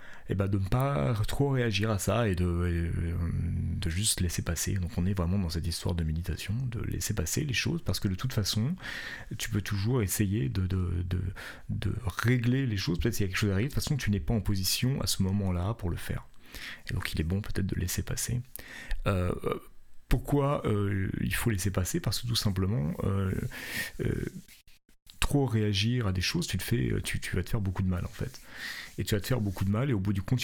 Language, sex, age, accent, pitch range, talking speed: French, male, 40-59, French, 90-115 Hz, 225 wpm